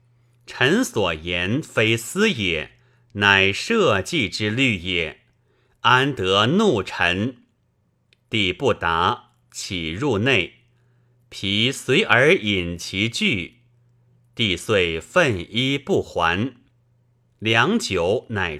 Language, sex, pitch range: Chinese, male, 100-125 Hz